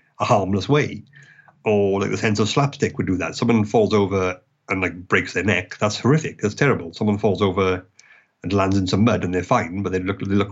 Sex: male